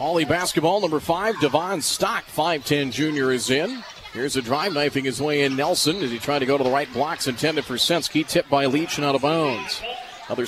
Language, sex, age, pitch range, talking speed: English, male, 40-59, 135-155 Hz, 220 wpm